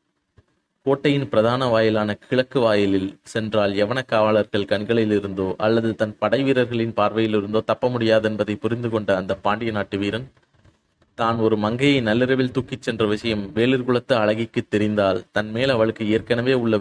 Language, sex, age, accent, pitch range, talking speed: Tamil, male, 20-39, native, 105-120 Hz, 135 wpm